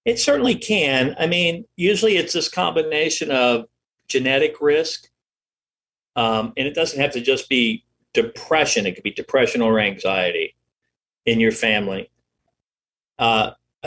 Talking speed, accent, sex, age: 135 wpm, American, male, 50-69